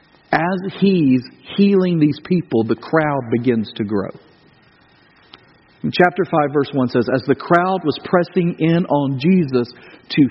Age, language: 50-69, English